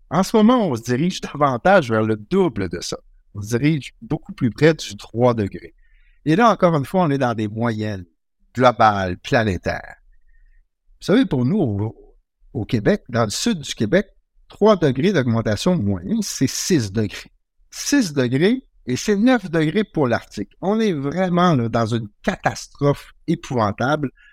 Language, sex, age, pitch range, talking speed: French, male, 60-79, 115-170 Hz, 165 wpm